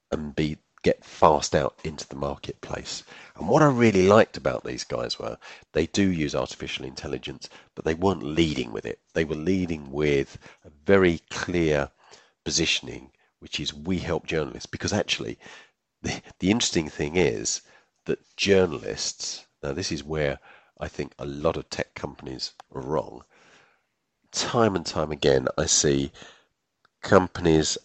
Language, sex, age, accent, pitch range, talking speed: English, male, 40-59, British, 70-90 Hz, 150 wpm